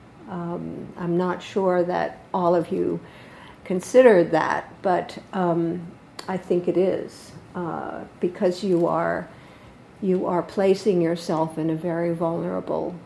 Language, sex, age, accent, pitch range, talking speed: English, female, 60-79, American, 170-190 Hz, 130 wpm